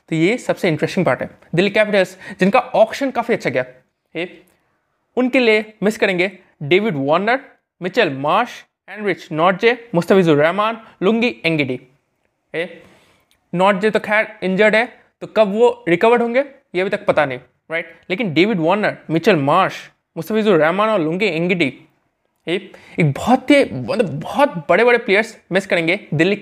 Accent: native